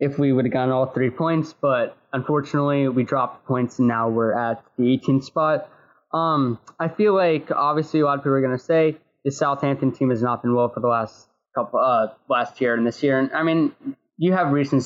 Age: 10-29